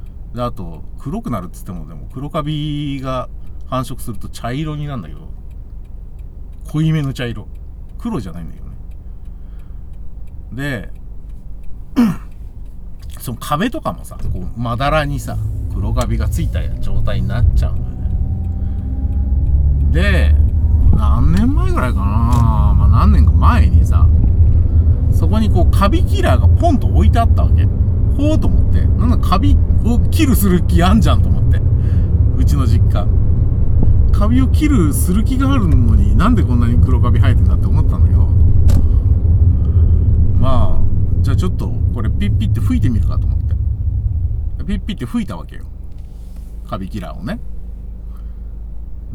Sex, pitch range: male, 85-100 Hz